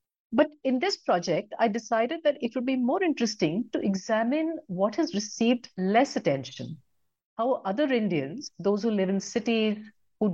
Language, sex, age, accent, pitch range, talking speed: English, female, 60-79, Indian, 175-245 Hz, 165 wpm